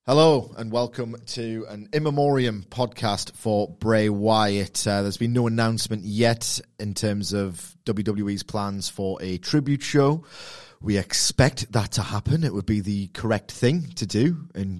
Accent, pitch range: British, 95-115 Hz